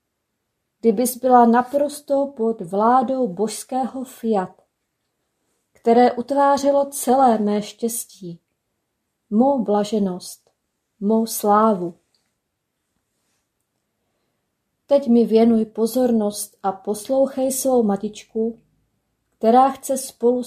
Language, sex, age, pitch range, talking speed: Czech, female, 30-49, 210-255 Hz, 80 wpm